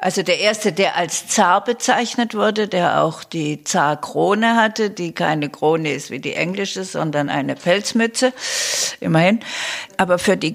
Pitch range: 175-220 Hz